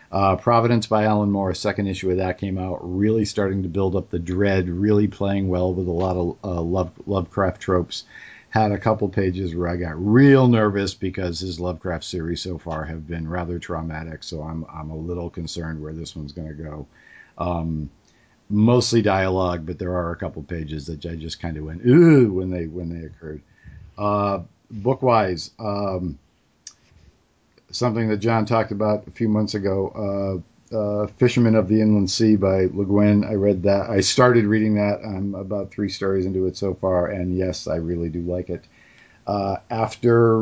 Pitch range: 85-105 Hz